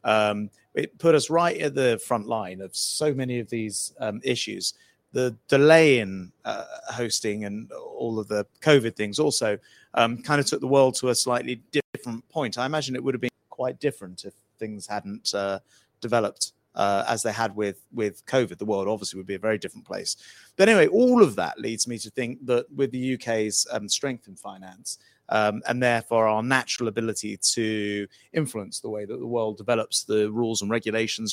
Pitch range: 110-140 Hz